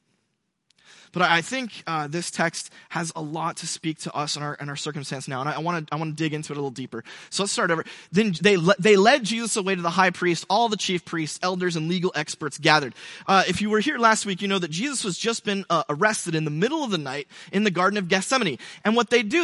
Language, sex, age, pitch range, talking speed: English, male, 20-39, 155-205 Hz, 265 wpm